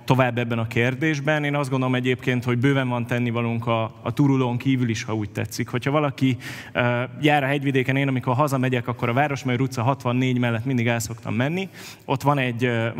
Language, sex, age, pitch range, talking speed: Hungarian, male, 20-39, 115-135 Hz, 195 wpm